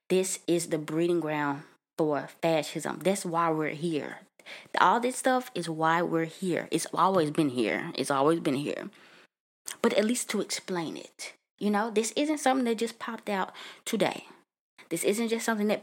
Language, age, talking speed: English, 20-39, 180 wpm